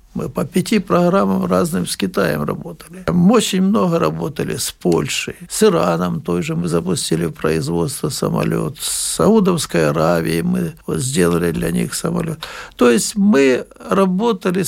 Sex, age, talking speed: male, 60-79, 135 wpm